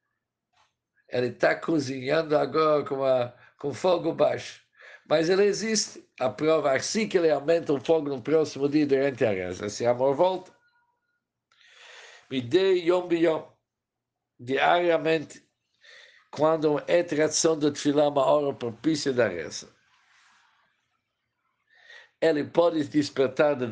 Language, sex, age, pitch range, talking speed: Portuguese, male, 60-79, 125-165 Hz, 120 wpm